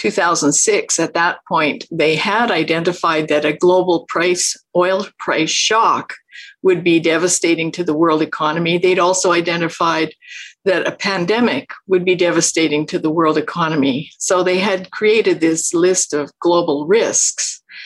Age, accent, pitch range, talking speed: 50-69, American, 165-195 Hz, 145 wpm